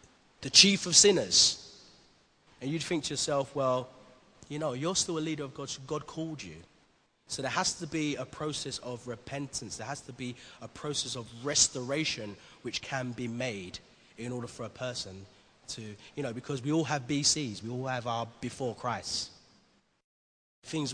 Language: English